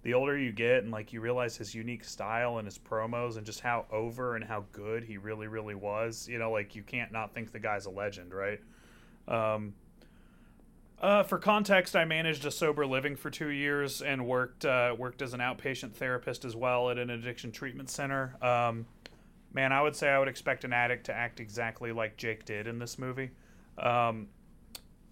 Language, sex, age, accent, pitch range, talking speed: English, male, 30-49, American, 110-130 Hz, 200 wpm